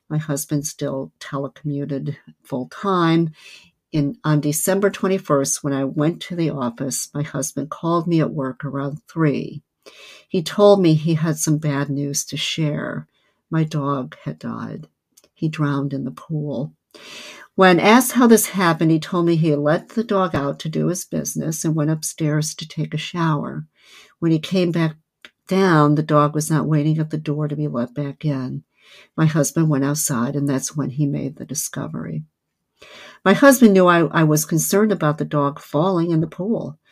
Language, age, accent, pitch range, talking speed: English, 60-79, American, 140-165 Hz, 175 wpm